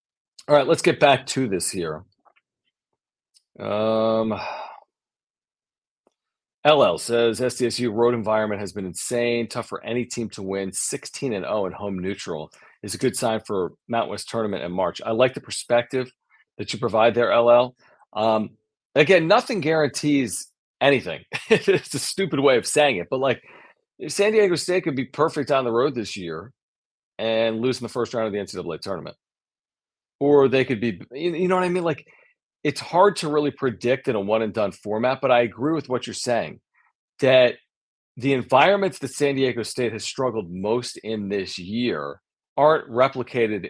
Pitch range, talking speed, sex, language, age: 110-135 Hz, 170 wpm, male, English, 40-59